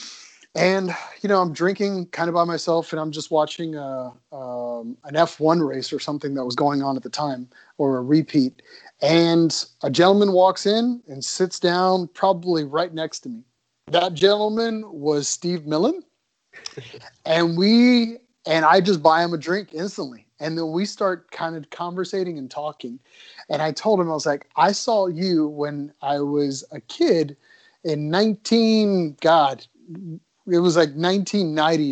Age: 30-49